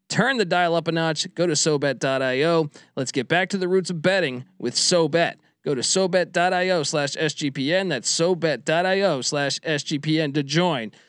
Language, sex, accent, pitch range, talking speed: English, male, American, 135-180 Hz, 160 wpm